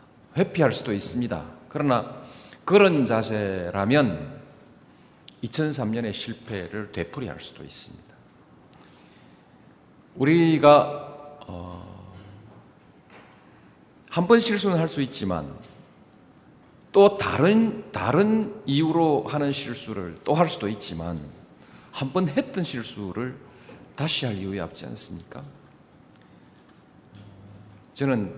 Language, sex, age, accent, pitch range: Korean, male, 40-59, native, 90-145 Hz